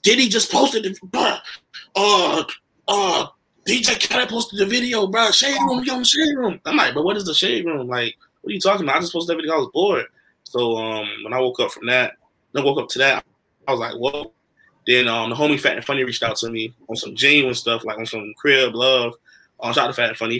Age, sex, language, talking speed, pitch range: 20-39, male, English, 255 wpm, 115-160 Hz